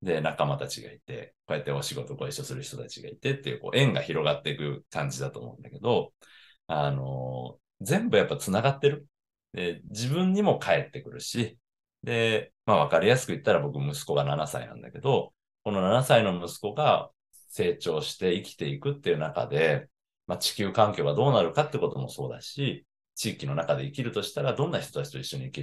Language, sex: Japanese, male